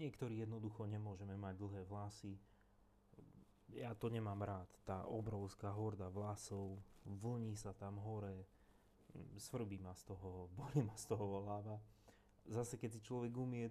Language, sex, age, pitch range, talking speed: Slovak, male, 30-49, 100-110 Hz, 140 wpm